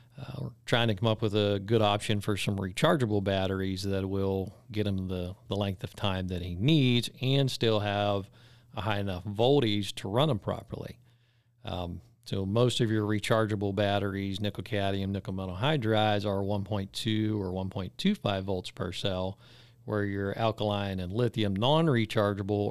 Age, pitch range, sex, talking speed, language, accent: 40-59, 100-120 Hz, male, 160 wpm, English, American